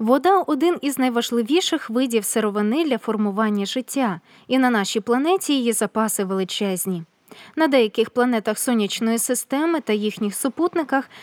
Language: Russian